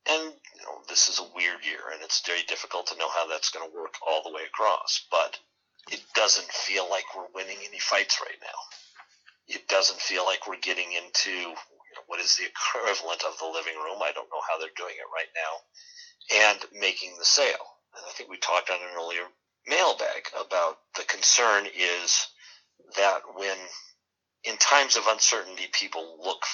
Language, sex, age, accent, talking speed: English, male, 50-69, American, 190 wpm